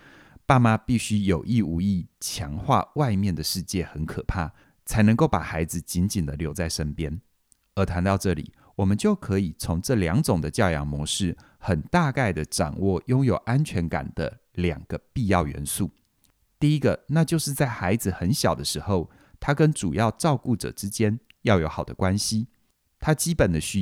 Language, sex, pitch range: Chinese, male, 80-115 Hz